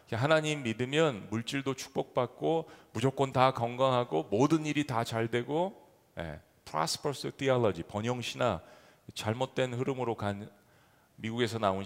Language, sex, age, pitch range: Korean, male, 40-59, 120-180 Hz